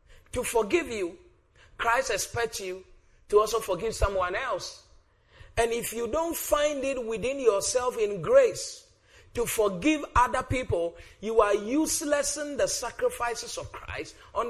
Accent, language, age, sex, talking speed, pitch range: Nigerian, English, 40-59, male, 140 wpm, 265-395 Hz